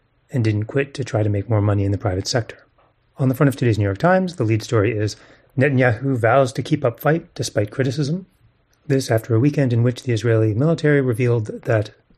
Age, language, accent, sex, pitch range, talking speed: 30-49, English, American, male, 115-145 Hz, 215 wpm